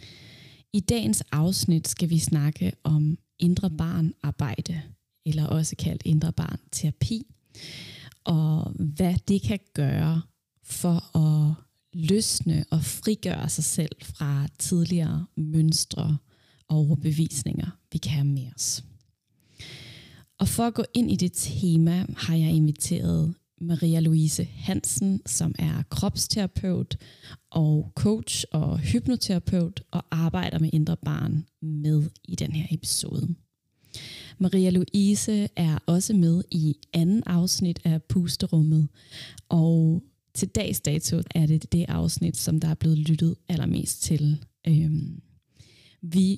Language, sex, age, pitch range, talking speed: Danish, female, 20-39, 145-170 Hz, 120 wpm